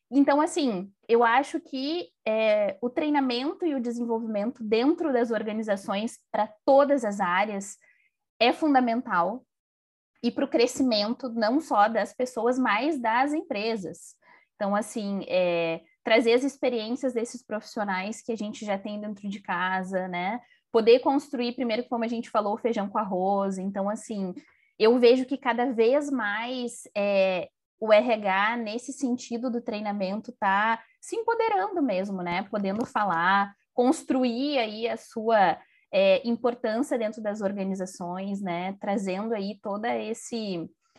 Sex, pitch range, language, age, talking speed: female, 205-260 Hz, Portuguese, 20-39, 135 wpm